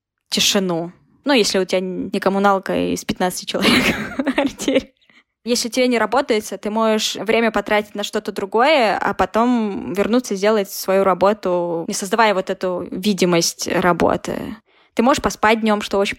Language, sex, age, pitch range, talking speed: Russian, female, 10-29, 190-225 Hz, 150 wpm